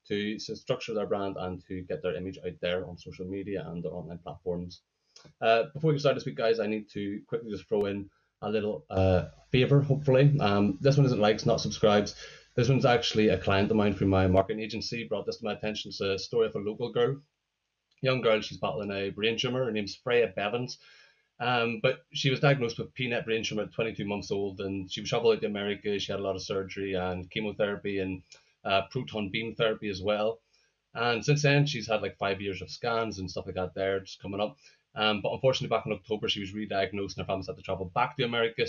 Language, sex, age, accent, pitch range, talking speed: English, male, 20-39, Irish, 100-120 Hz, 230 wpm